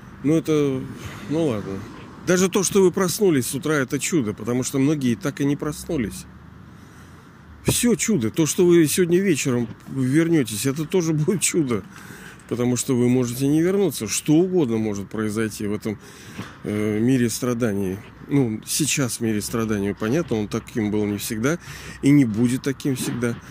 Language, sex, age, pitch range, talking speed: Russian, male, 40-59, 110-145 Hz, 160 wpm